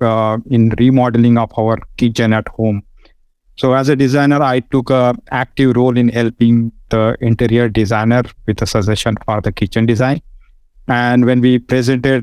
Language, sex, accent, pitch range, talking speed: English, male, Indian, 115-135 Hz, 160 wpm